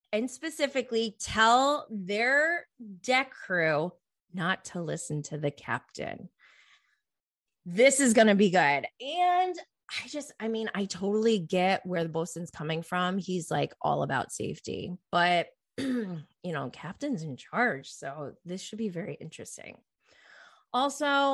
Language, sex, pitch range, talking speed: English, female, 175-240 Hz, 140 wpm